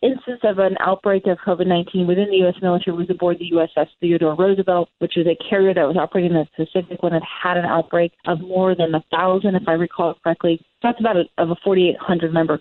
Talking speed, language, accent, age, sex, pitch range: 210 wpm, English, American, 30-49, female, 165-190 Hz